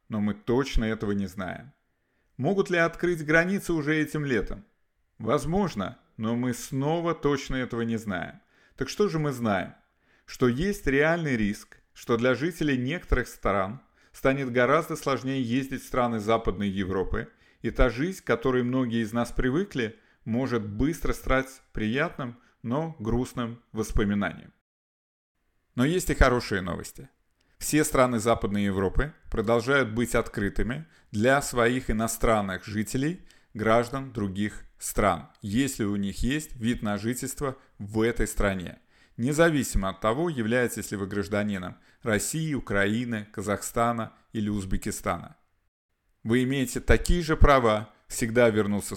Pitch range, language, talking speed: 105-135 Hz, Russian, 130 wpm